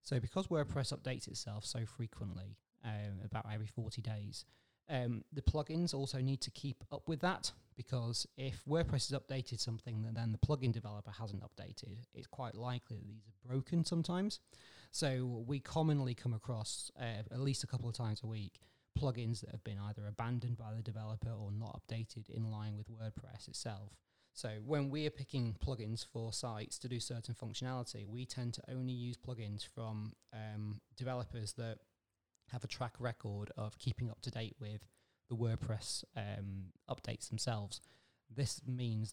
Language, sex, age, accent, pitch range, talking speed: English, male, 30-49, British, 110-125 Hz, 175 wpm